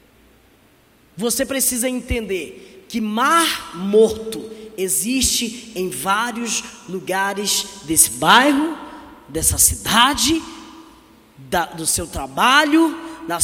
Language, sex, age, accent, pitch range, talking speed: Portuguese, female, 20-39, Brazilian, 255-335 Hz, 80 wpm